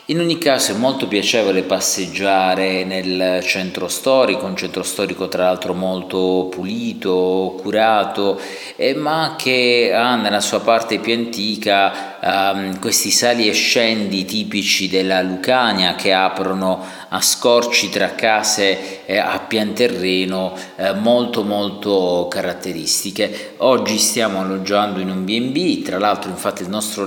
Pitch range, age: 95-110 Hz, 40-59